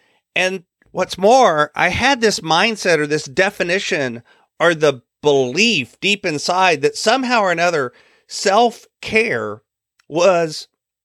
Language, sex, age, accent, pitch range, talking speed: English, male, 40-59, American, 160-215 Hz, 120 wpm